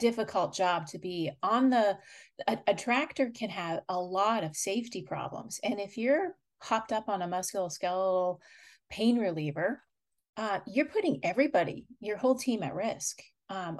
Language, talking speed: English, 155 wpm